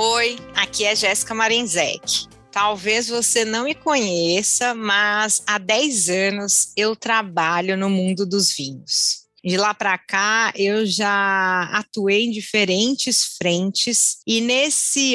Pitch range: 190-235 Hz